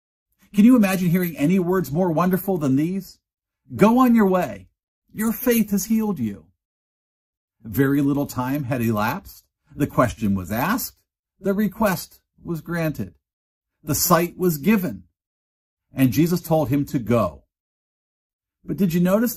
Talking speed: 145 wpm